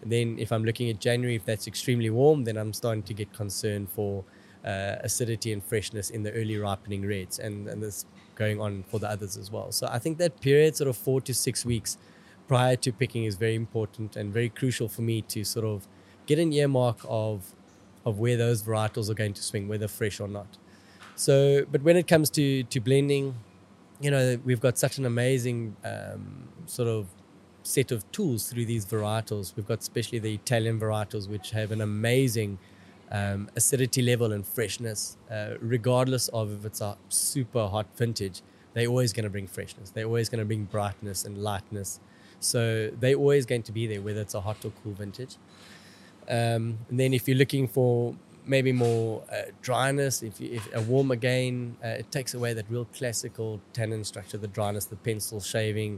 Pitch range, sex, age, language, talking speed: 105-125 Hz, male, 20-39, English, 195 wpm